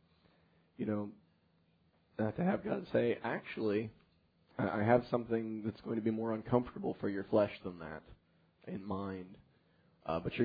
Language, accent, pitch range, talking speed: English, American, 105-115 Hz, 160 wpm